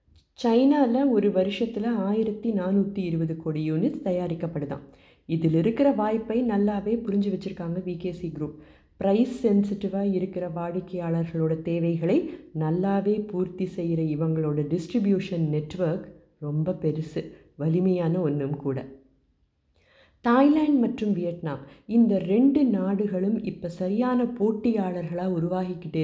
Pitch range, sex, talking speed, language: 160-215 Hz, female, 100 wpm, Tamil